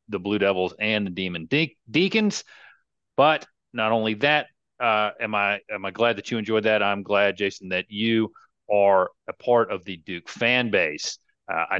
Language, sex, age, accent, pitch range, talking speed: English, male, 40-59, American, 100-130 Hz, 190 wpm